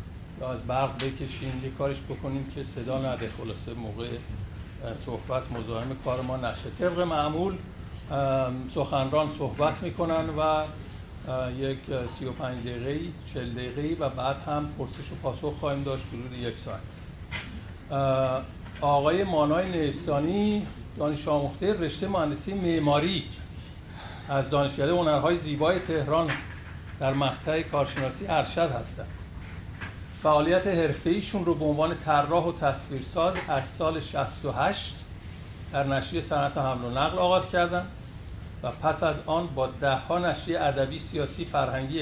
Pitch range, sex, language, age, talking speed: 120-155 Hz, male, Persian, 60-79, 125 wpm